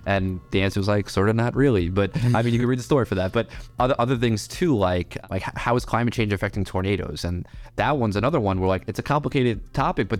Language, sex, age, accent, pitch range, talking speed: English, male, 20-39, American, 90-115 Hz, 260 wpm